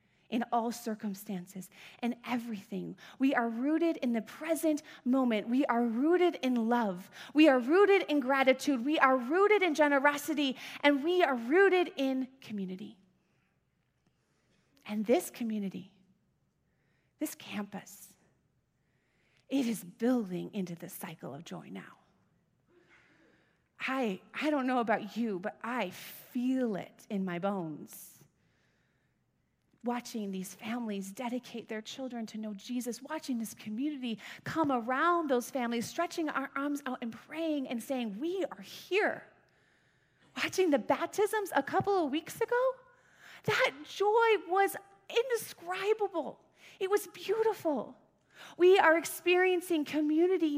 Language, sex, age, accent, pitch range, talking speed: English, female, 30-49, American, 230-340 Hz, 125 wpm